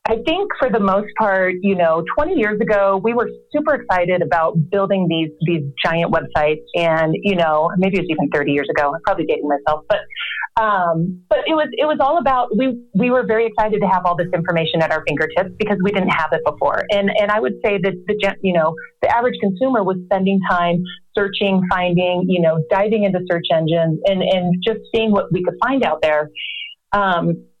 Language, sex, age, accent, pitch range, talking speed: English, female, 30-49, American, 170-215 Hz, 210 wpm